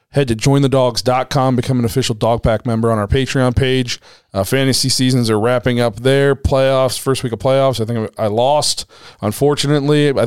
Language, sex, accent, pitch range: English, male, American, 115-135 Hz